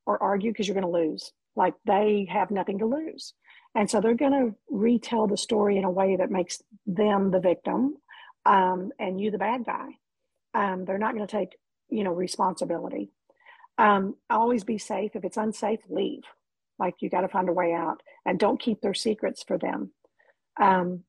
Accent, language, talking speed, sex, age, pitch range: American, English, 195 wpm, female, 50-69, 190-250 Hz